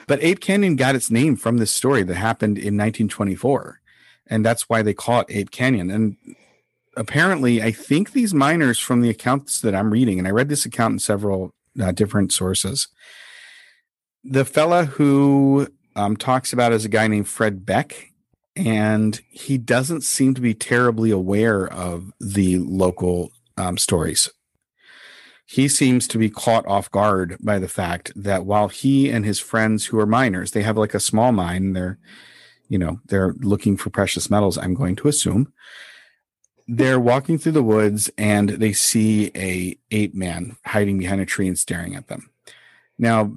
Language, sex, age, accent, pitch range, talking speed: English, male, 40-59, American, 100-125 Hz, 175 wpm